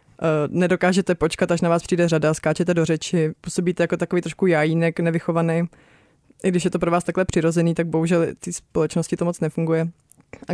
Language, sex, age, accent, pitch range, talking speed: Czech, female, 20-39, native, 165-190 Hz, 180 wpm